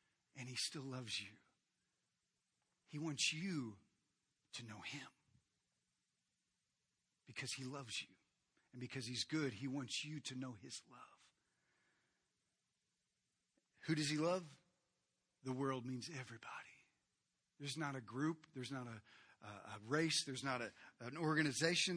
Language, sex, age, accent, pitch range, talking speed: English, male, 40-59, American, 125-185 Hz, 130 wpm